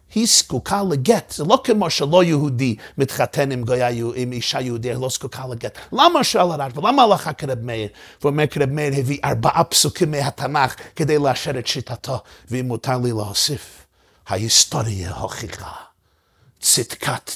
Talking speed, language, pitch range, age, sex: 145 wpm, Hebrew, 125-170 Hz, 50-69, male